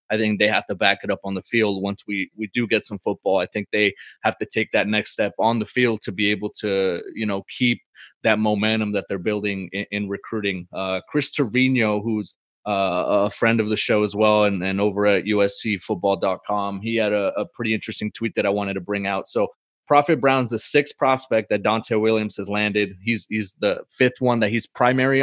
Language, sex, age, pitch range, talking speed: English, male, 20-39, 100-115 Hz, 225 wpm